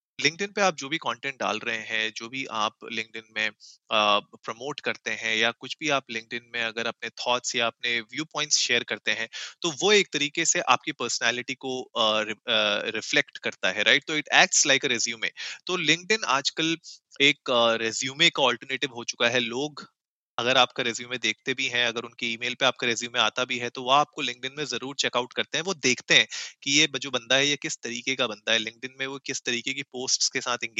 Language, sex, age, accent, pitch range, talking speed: Hindi, male, 30-49, native, 120-155 Hz, 150 wpm